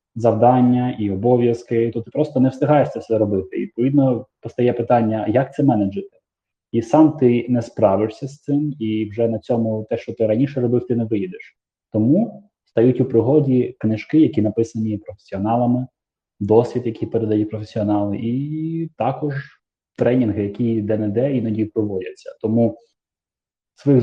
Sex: male